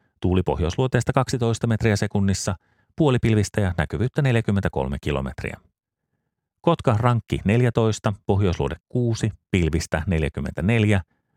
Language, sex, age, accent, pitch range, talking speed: Finnish, male, 30-49, native, 90-115 Hz, 80 wpm